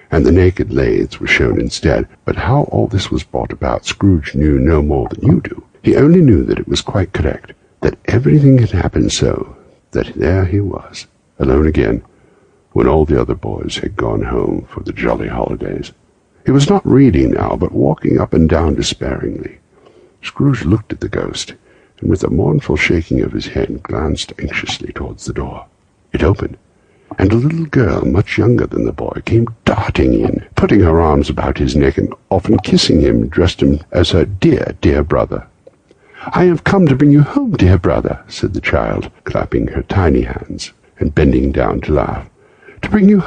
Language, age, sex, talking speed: English, 60-79, male, 190 wpm